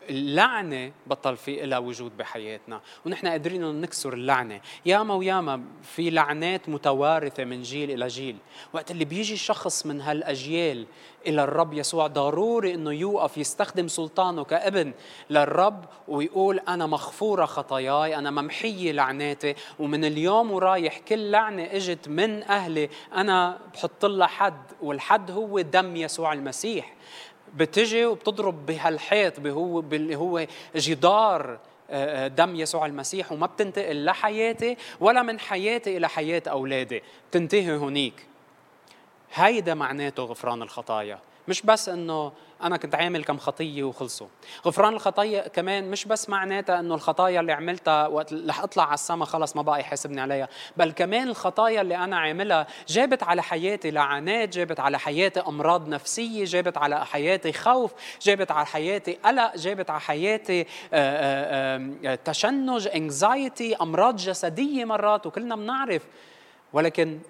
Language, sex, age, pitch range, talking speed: English, male, 20-39, 145-195 Hz, 130 wpm